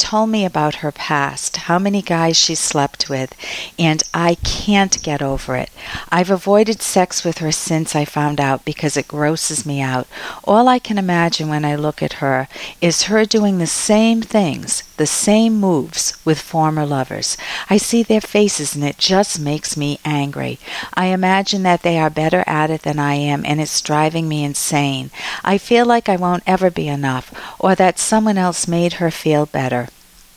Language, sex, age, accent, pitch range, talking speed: English, female, 50-69, American, 150-200 Hz, 185 wpm